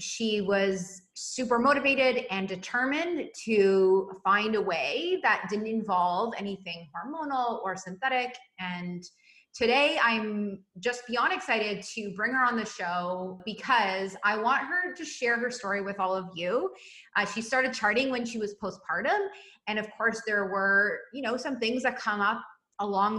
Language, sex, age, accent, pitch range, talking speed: English, female, 30-49, American, 190-255 Hz, 160 wpm